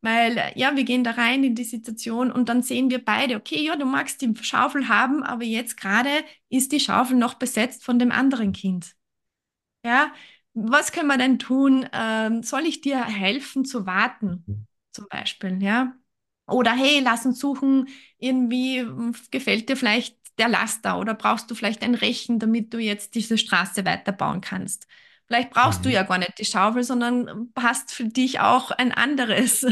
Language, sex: English, female